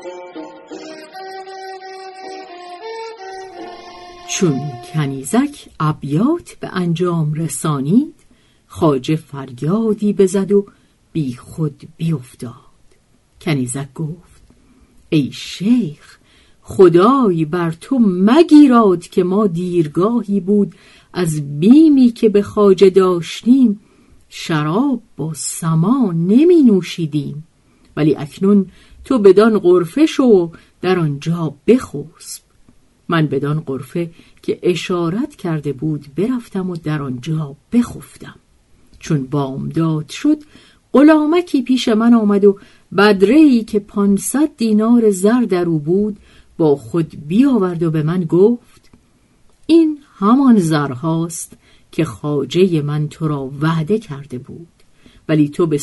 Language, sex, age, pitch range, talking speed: Persian, female, 50-69, 155-235 Hz, 100 wpm